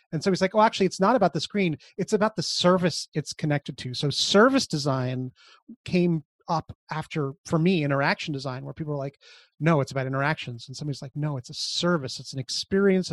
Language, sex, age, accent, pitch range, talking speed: English, male, 30-49, American, 140-180 Hz, 210 wpm